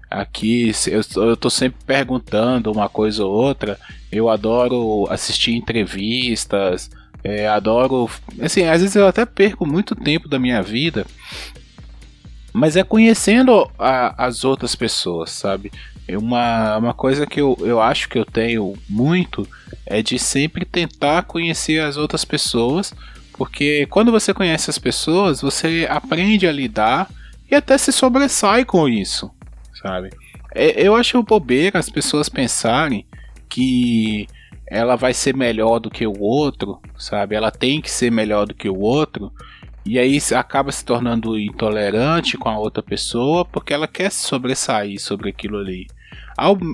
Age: 20-39